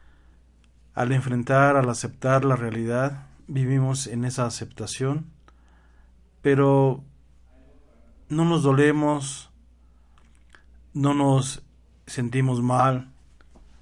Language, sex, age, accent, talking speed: Spanish, male, 50-69, Mexican, 80 wpm